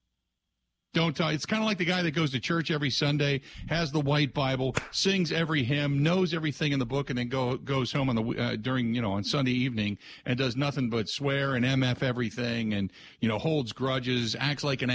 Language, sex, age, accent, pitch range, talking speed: English, male, 50-69, American, 115-170 Hz, 225 wpm